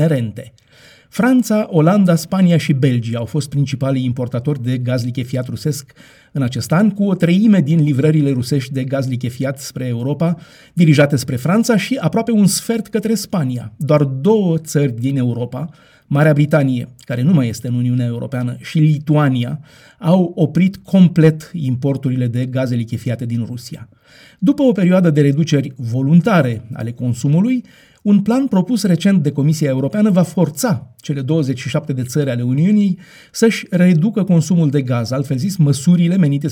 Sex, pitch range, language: male, 130-180 Hz, Romanian